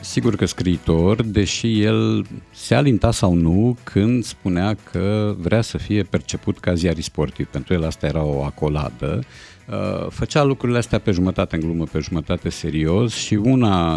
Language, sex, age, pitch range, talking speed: Romanian, male, 50-69, 80-110 Hz, 155 wpm